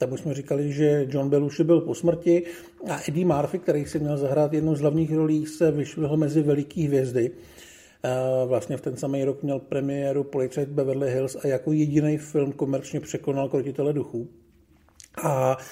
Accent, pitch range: native, 140-180 Hz